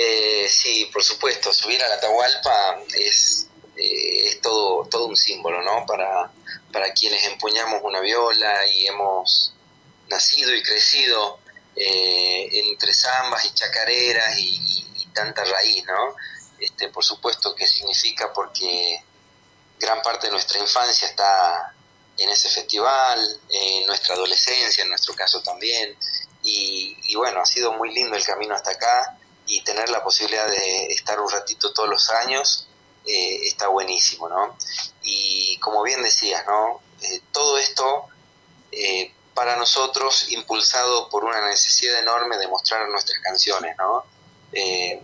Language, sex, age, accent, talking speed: Spanish, male, 30-49, Argentinian, 145 wpm